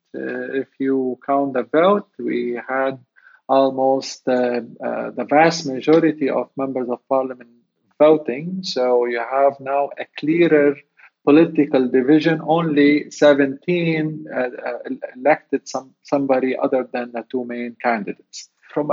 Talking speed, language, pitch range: 125 wpm, English, 130-155 Hz